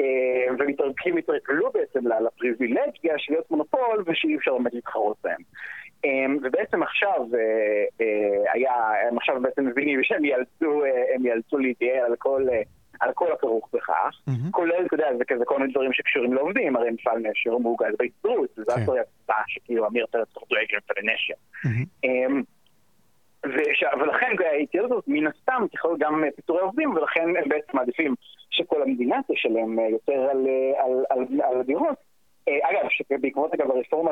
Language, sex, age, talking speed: Hebrew, male, 30-49, 130 wpm